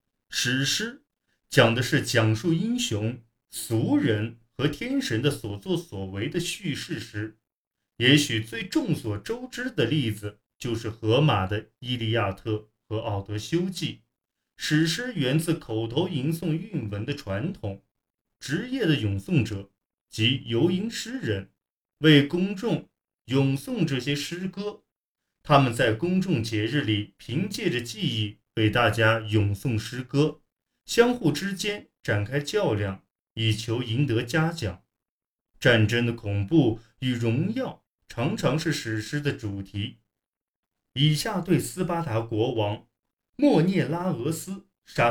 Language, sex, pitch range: Chinese, male, 110-160 Hz